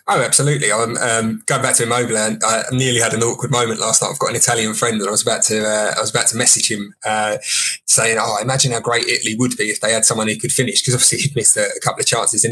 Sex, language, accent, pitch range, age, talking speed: male, English, British, 110-125 Hz, 20-39, 285 wpm